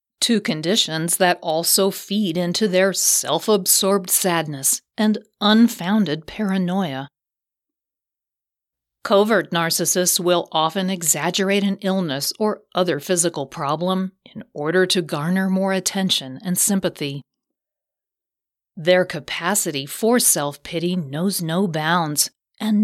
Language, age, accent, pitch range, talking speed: English, 40-59, American, 160-200 Hz, 100 wpm